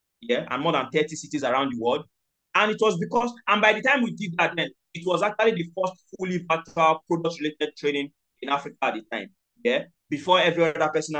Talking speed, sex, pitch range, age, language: 220 wpm, male, 145-195 Hz, 30-49, English